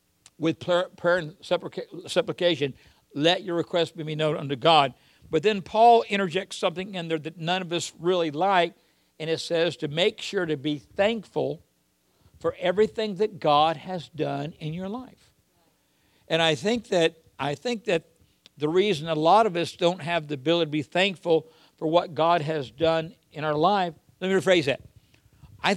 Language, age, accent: English, 60-79, American